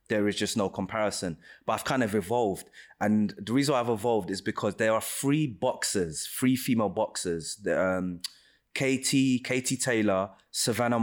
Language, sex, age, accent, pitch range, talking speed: English, male, 20-39, British, 105-125 Hz, 165 wpm